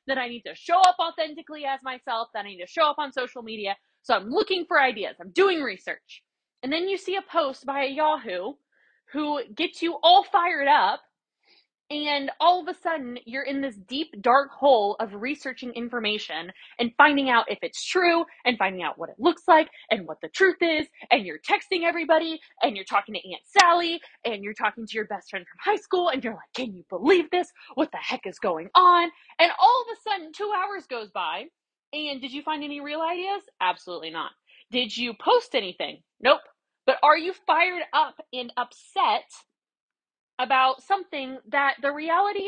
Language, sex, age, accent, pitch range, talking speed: English, female, 20-39, American, 240-335 Hz, 200 wpm